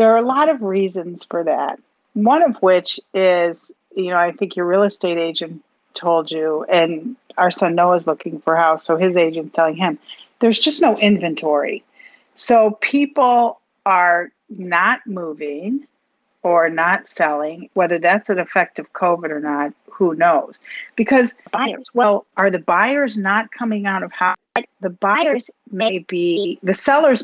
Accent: American